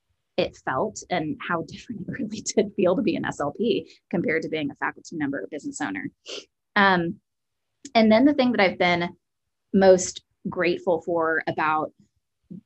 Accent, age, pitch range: American, 20-39, 170-210 Hz